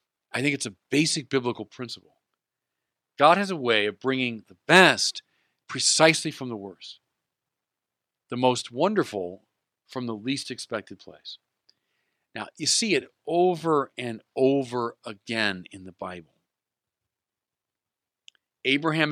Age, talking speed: 40-59, 120 wpm